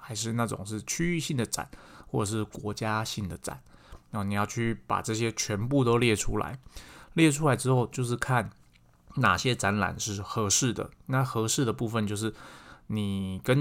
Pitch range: 100-120 Hz